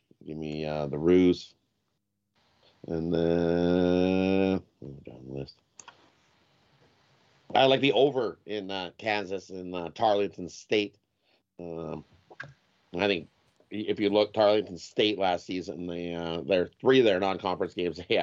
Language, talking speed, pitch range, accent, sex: English, 135 wpm, 75-95 Hz, American, male